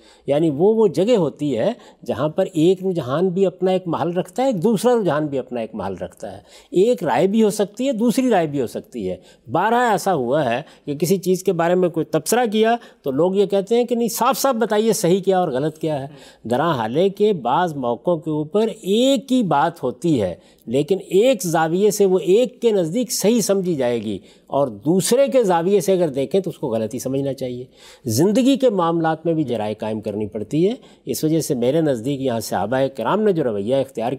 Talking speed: 220 wpm